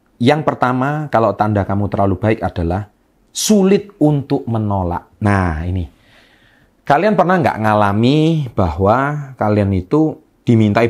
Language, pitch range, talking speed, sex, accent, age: Indonesian, 100-130 Hz, 115 wpm, male, native, 30-49